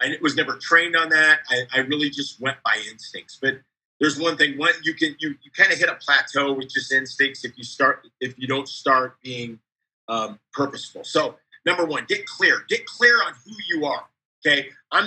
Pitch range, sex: 140-180 Hz, male